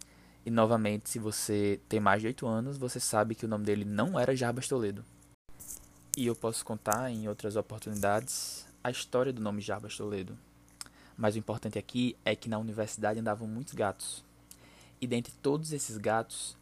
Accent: Brazilian